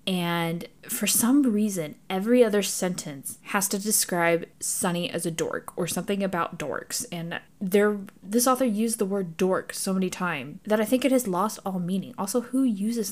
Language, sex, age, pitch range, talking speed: English, female, 10-29, 160-205 Hz, 180 wpm